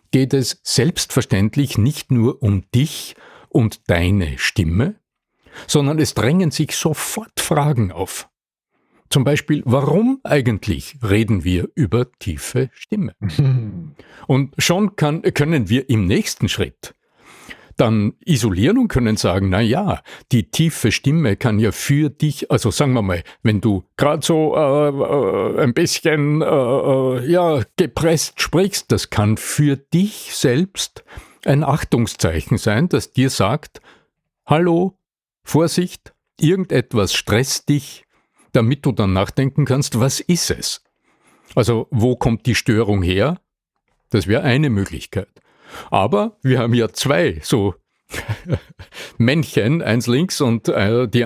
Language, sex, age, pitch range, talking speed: German, male, 50-69, 105-150 Hz, 130 wpm